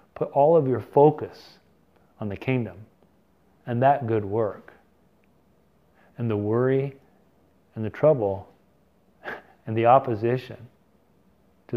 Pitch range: 105-125 Hz